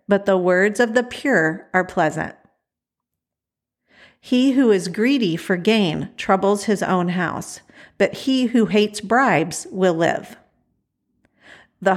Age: 50-69